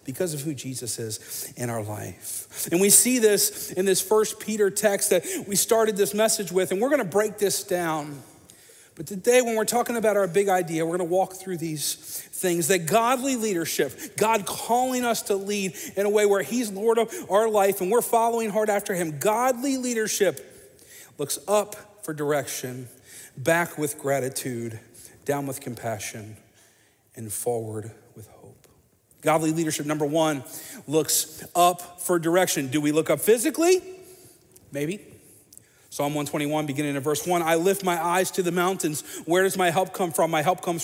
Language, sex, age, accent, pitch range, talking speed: English, male, 40-59, American, 145-200 Hz, 175 wpm